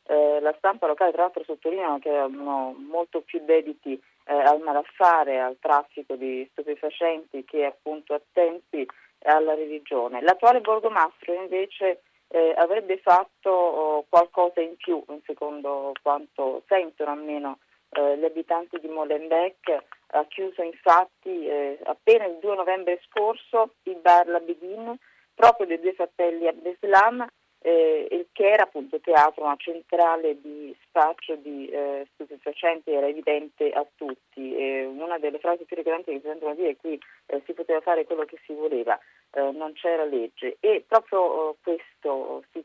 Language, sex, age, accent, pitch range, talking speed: Italian, female, 30-49, native, 145-180 Hz, 150 wpm